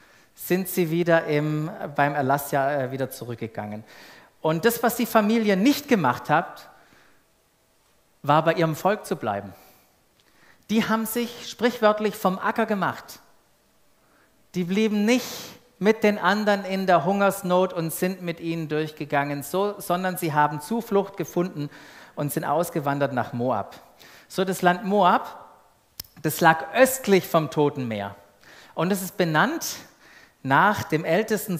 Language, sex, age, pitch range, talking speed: German, male, 40-59, 145-200 Hz, 135 wpm